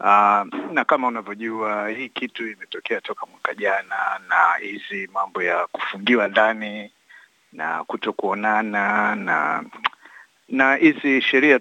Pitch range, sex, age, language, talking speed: 105-130 Hz, male, 60-79, Swahili, 120 wpm